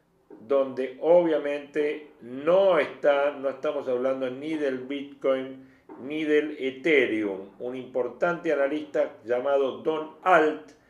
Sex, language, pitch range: male, Spanish, 135-155 Hz